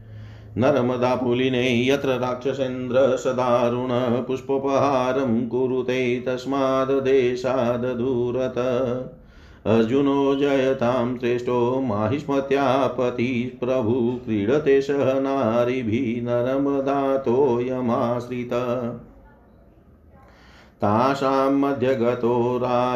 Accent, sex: native, male